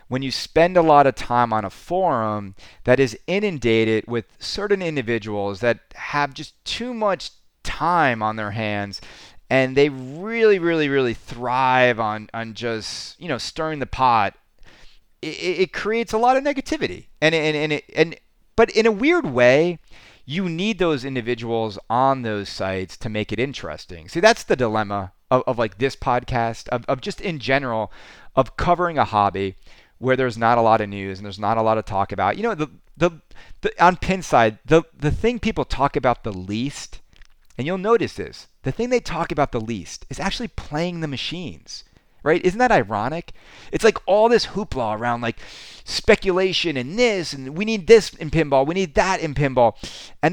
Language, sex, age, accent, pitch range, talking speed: English, male, 30-49, American, 110-180 Hz, 190 wpm